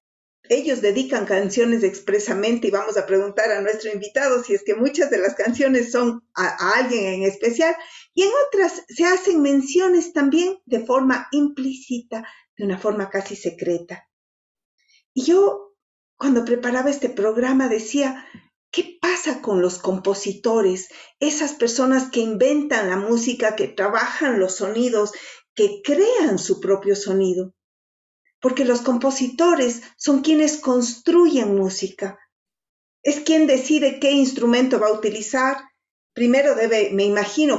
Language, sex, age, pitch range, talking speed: Spanish, female, 50-69, 210-285 Hz, 135 wpm